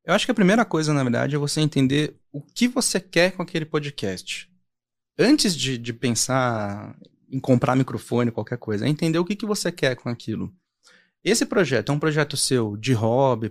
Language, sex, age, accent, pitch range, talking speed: Portuguese, male, 30-49, Brazilian, 115-150 Hz, 195 wpm